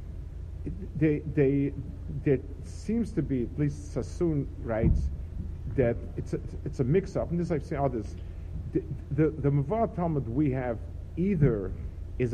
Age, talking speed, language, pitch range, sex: 50-69, 150 wpm, English, 85-140 Hz, male